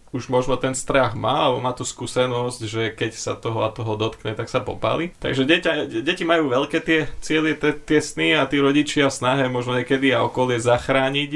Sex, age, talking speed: male, 20-39, 195 wpm